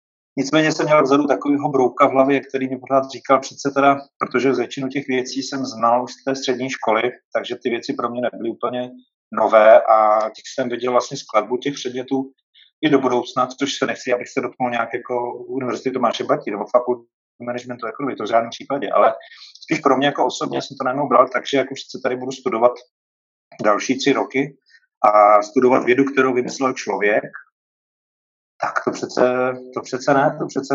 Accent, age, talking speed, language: native, 30-49, 185 wpm, Czech